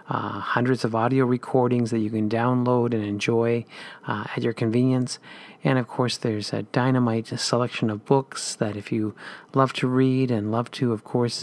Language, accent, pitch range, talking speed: English, American, 115-135 Hz, 185 wpm